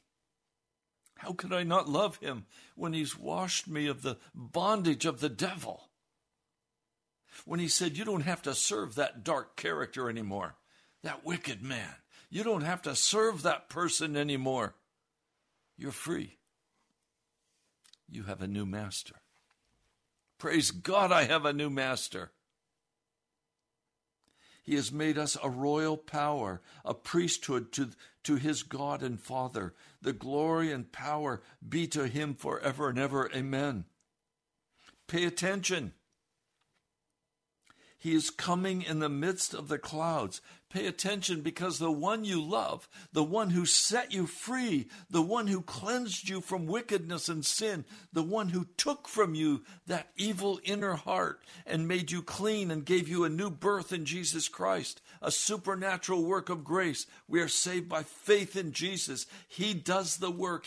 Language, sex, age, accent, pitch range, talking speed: English, male, 60-79, American, 145-185 Hz, 150 wpm